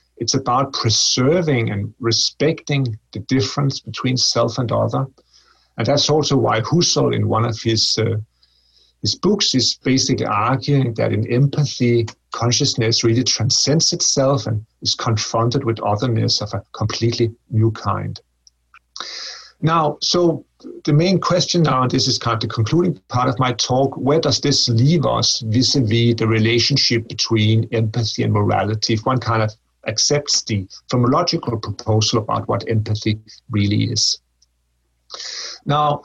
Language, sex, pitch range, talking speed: English, male, 110-135 Hz, 145 wpm